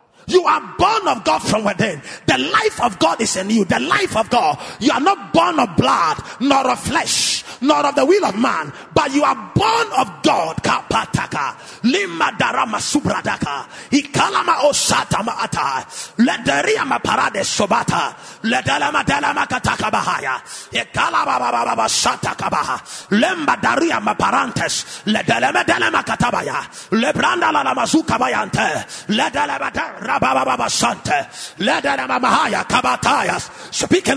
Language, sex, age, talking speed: English, male, 30-49, 70 wpm